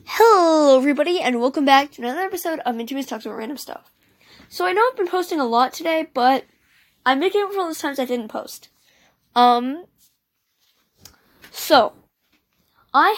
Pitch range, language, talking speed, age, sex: 240-330 Hz, English, 175 wpm, 10-29, female